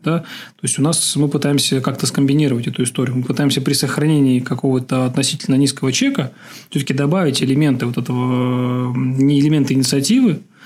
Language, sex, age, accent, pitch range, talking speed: Russian, male, 20-39, native, 130-155 Hz, 150 wpm